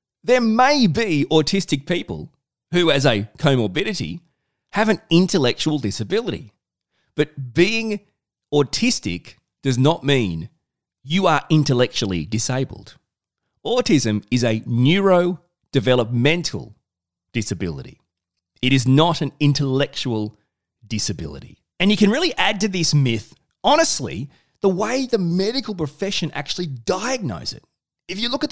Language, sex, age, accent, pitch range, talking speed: English, male, 30-49, Australian, 130-190 Hz, 115 wpm